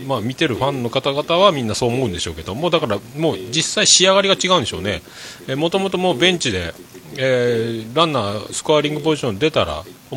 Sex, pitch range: male, 100-165 Hz